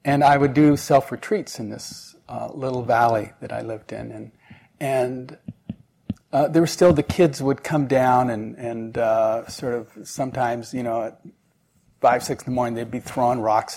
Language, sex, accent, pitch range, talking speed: English, male, American, 115-150 Hz, 190 wpm